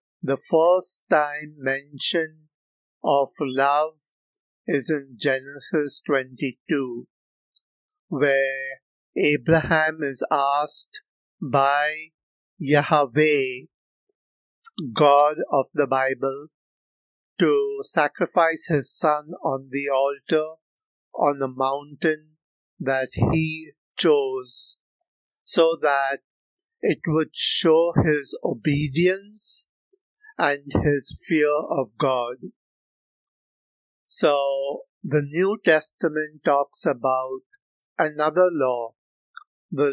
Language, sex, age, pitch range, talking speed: Hindi, male, 50-69, 135-165 Hz, 80 wpm